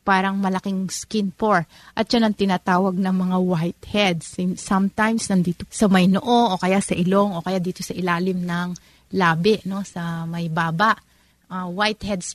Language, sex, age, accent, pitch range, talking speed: Filipino, female, 30-49, native, 175-205 Hz, 160 wpm